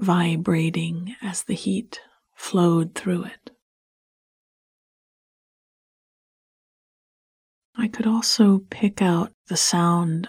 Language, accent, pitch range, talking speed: English, American, 175-215 Hz, 80 wpm